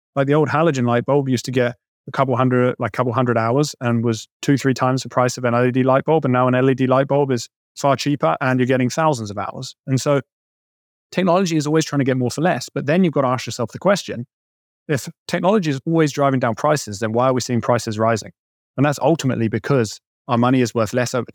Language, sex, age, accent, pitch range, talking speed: English, male, 20-39, British, 120-145 Hz, 245 wpm